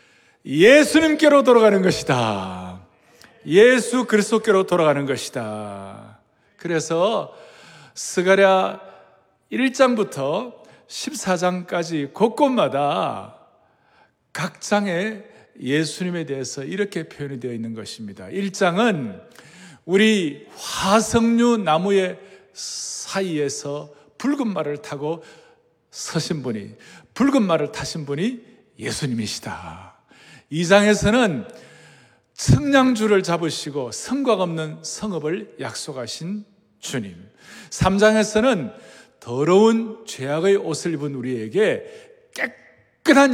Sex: male